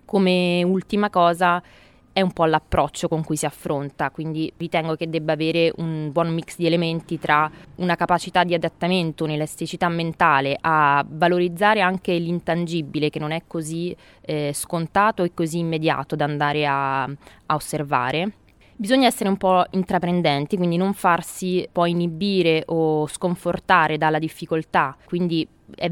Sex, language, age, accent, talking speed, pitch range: female, Italian, 20-39, native, 145 wpm, 155-175 Hz